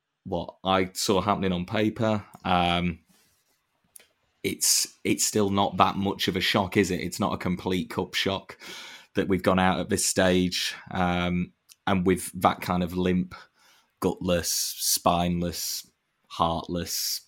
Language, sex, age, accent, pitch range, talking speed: English, male, 20-39, British, 90-95 Hz, 140 wpm